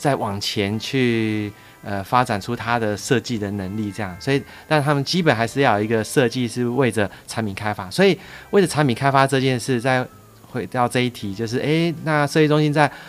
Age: 30-49